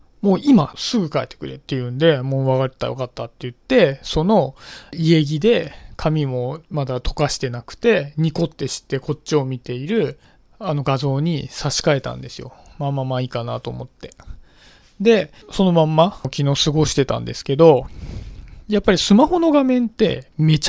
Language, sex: Japanese, male